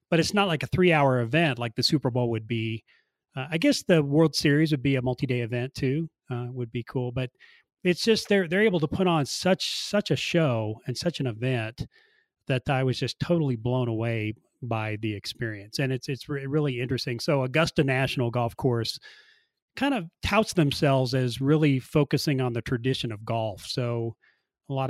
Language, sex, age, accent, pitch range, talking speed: English, male, 30-49, American, 120-145 Hz, 200 wpm